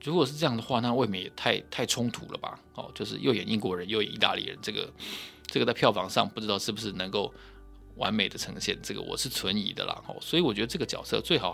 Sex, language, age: male, Chinese, 20-39